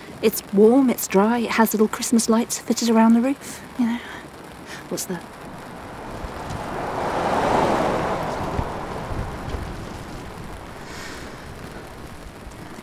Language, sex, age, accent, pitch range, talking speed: English, female, 40-59, British, 185-225 Hz, 85 wpm